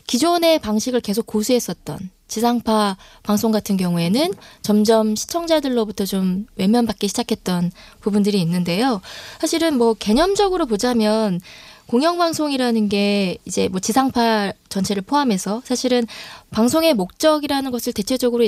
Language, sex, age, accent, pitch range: Korean, female, 20-39, native, 205-260 Hz